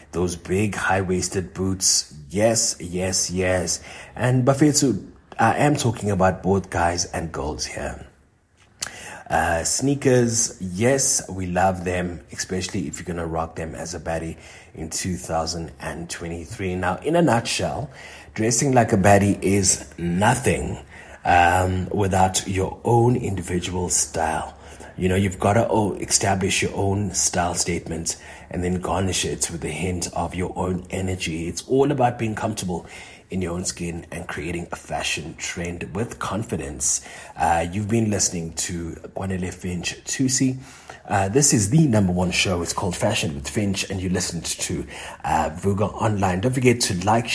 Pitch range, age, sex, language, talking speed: 85-110 Hz, 30-49, male, English, 155 wpm